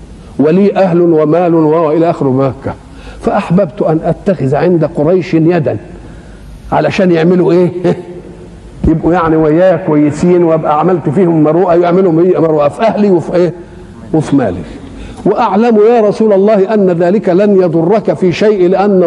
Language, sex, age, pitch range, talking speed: Arabic, male, 60-79, 160-200 Hz, 130 wpm